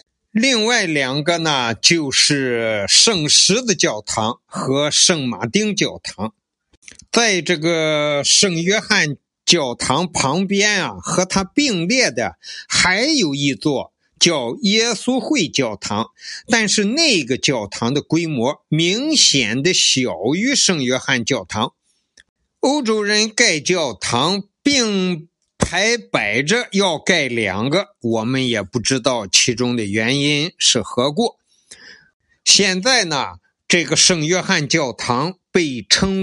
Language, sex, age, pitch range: Chinese, male, 50-69, 140-210 Hz